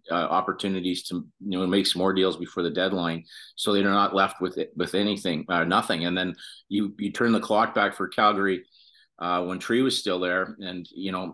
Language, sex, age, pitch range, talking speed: English, male, 40-59, 85-100 Hz, 215 wpm